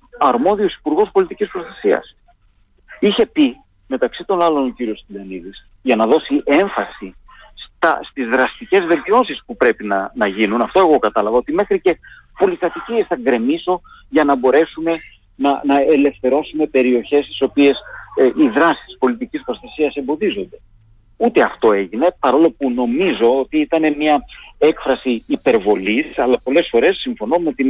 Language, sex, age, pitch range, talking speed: Greek, male, 50-69, 125-200 Hz, 145 wpm